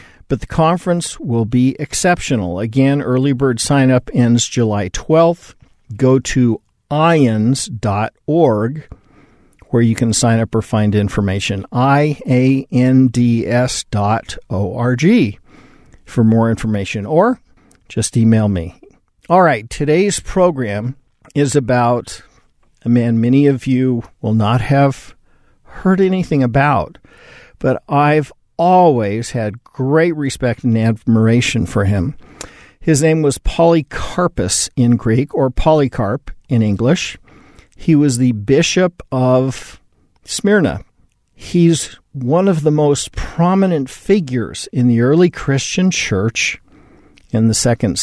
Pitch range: 110-145 Hz